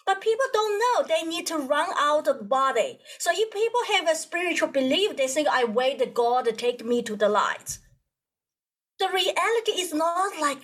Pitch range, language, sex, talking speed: 255-340 Hz, English, female, 190 wpm